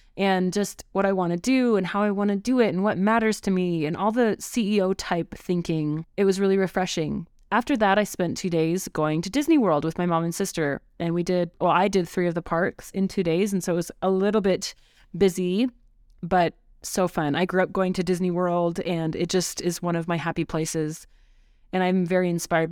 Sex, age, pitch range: female, 20-39, 165-195 Hz